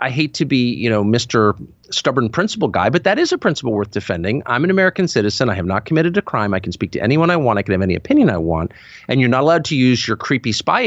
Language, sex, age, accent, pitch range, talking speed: English, male, 40-59, American, 110-180 Hz, 275 wpm